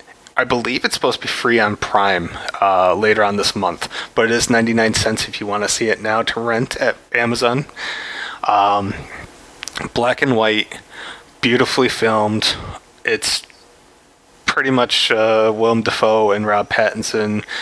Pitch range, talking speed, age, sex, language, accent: 105-125 Hz, 150 wpm, 30-49, male, English, American